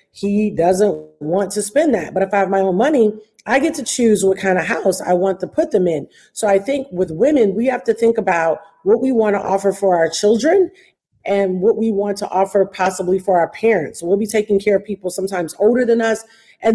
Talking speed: 235 wpm